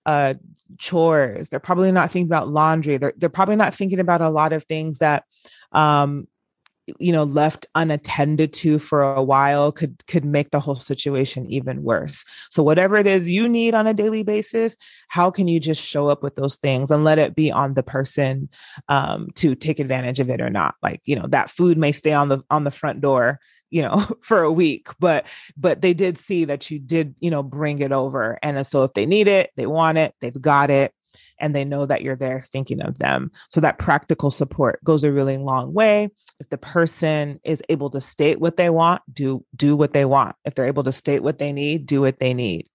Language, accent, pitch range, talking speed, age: English, American, 140-170 Hz, 220 wpm, 30-49